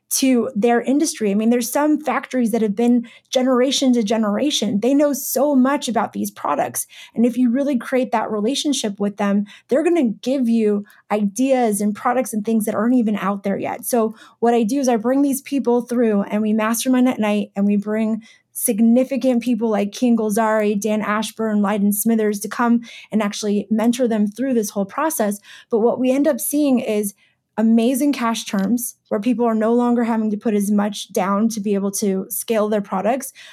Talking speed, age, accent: 200 wpm, 20-39, American